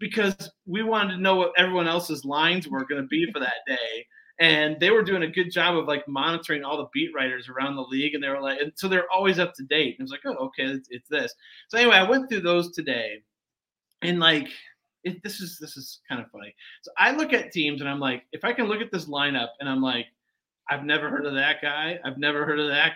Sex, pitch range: male, 150-215 Hz